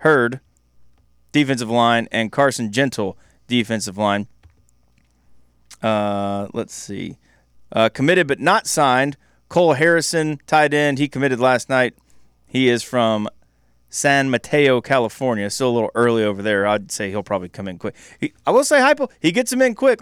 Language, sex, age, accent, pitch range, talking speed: English, male, 30-49, American, 105-150 Hz, 160 wpm